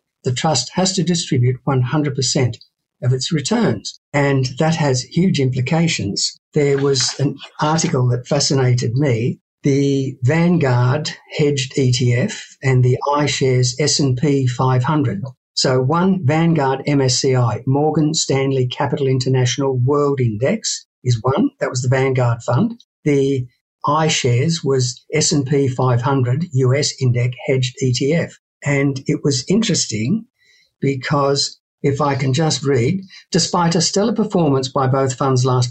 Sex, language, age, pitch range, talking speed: male, English, 60-79, 130-160 Hz, 125 wpm